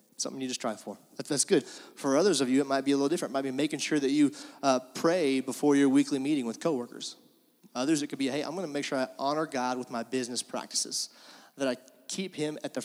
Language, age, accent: English, 30-49, American